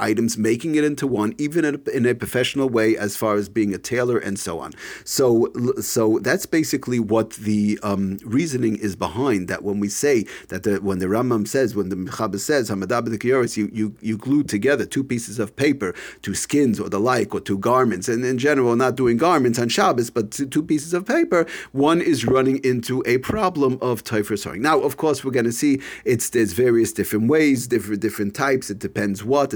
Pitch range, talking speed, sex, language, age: 110-145 Hz, 210 wpm, male, English, 40-59